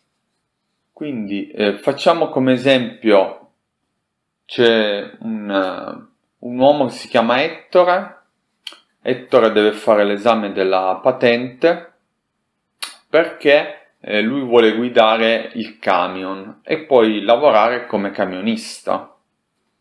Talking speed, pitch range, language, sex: 95 wpm, 105-145 Hz, Italian, male